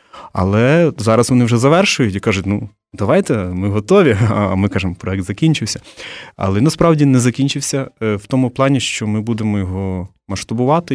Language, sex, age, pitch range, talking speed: Ukrainian, male, 30-49, 100-125 Hz, 155 wpm